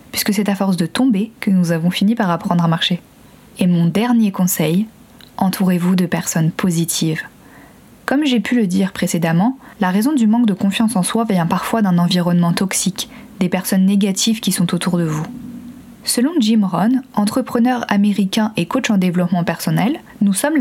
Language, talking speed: French, 180 wpm